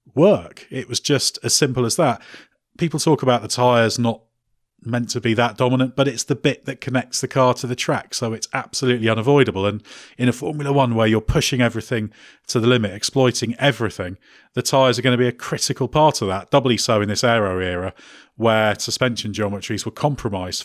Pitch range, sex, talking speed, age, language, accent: 110-130 Hz, male, 205 wpm, 30-49, English, British